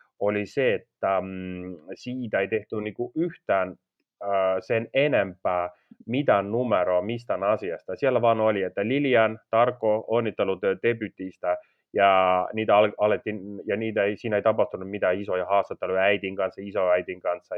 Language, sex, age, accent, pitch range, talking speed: Finnish, male, 30-49, native, 95-110 Hz, 135 wpm